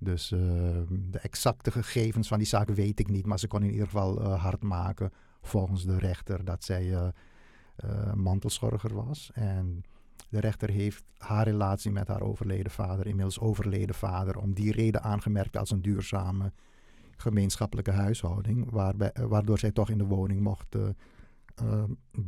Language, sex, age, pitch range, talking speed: Dutch, male, 50-69, 95-110 Hz, 165 wpm